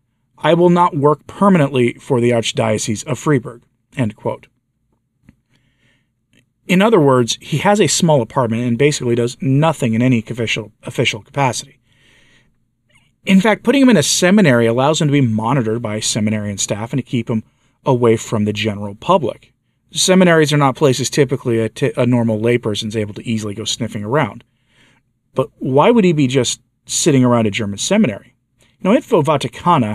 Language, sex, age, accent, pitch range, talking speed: English, male, 40-59, American, 115-140 Hz, 165 wpm